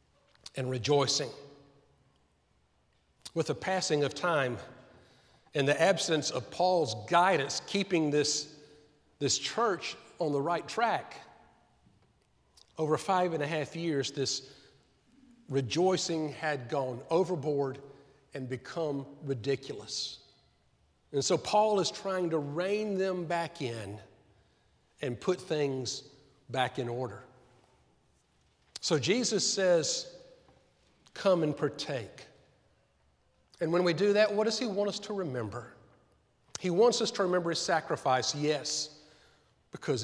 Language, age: English, 50-69